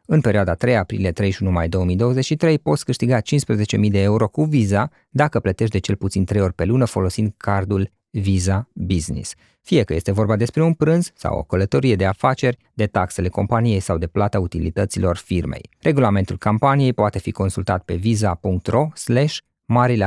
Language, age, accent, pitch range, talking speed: Romanian, 20-39, native, 95-125 Hz, 165 wpm